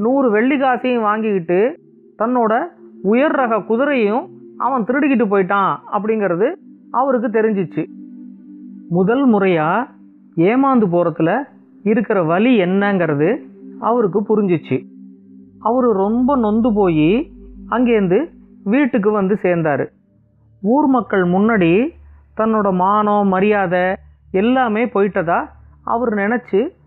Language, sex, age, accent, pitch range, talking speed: Tamil, female, 30-49, native, 170-240 Hz, 90 wpm